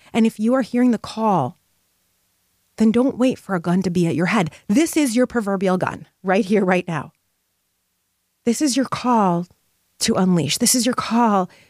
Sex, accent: female, American